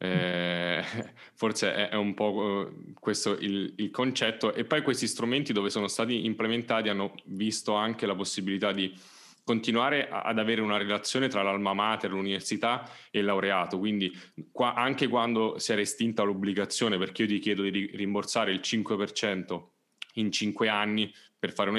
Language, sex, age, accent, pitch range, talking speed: Italian, male, 10-29, native, 95-115 Hz, 165 wpm